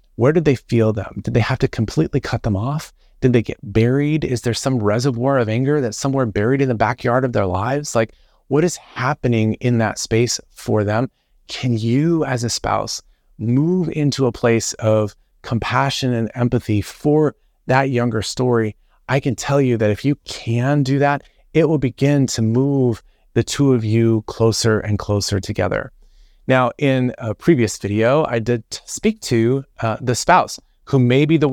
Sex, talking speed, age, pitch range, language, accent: male, 185 wpm, 30-49, 110-135 Hz, English, American